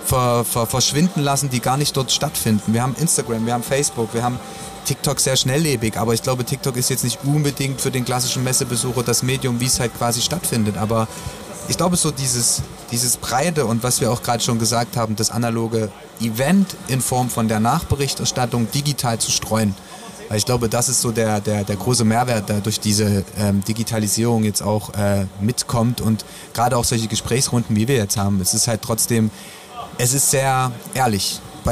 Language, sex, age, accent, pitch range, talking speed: German, male, 30-49, German, 115-140 Hz, 190 wpm